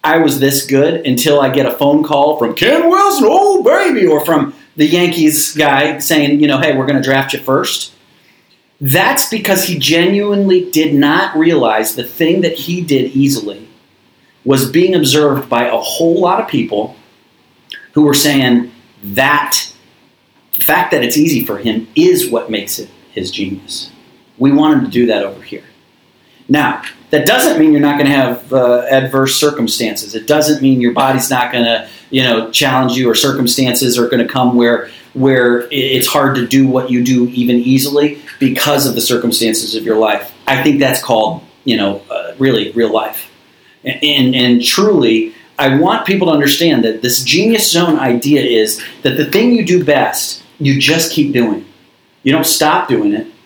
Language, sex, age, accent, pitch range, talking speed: English, male, 40-59, American, 125-160 Hz, 185 wpm